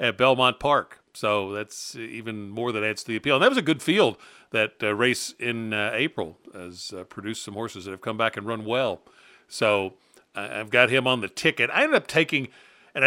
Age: 50-69